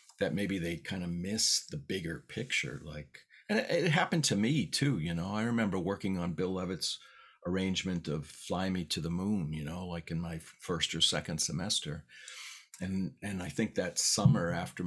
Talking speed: 195 wpm